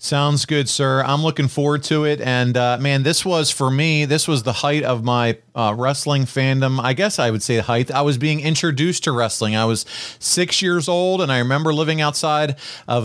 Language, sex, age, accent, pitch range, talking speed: English, male, 40-59, American, 120-160 Hz, 220 wpm